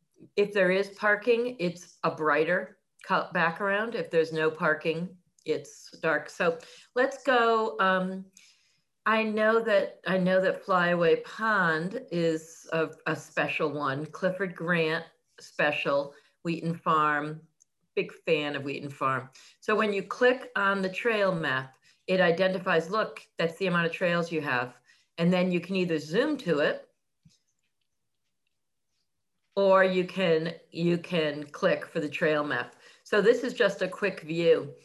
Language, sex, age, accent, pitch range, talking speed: English, female, 40-59, American, 160-200 Hz, 140 wpm